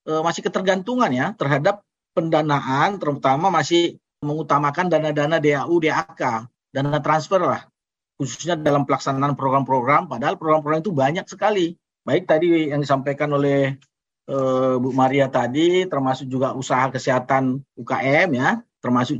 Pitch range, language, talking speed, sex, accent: 130-160 Hz, Indonesian, 125 wpm, male, native